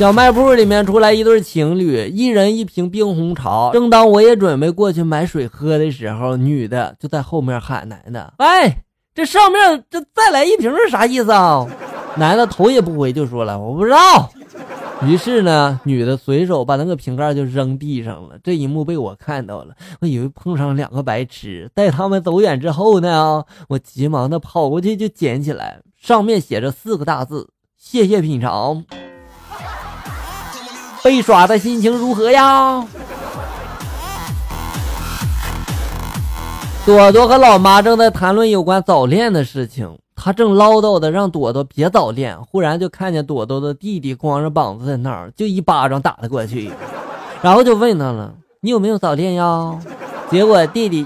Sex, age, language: male, 20-39, Chinese